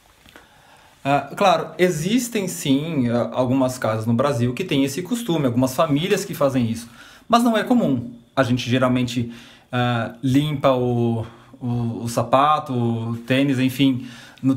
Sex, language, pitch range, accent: male, Chinese, 125-165 Hz, Brazilian